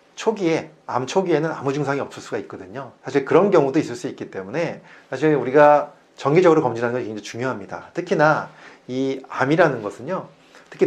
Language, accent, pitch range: Korean, native, 120-175 Hz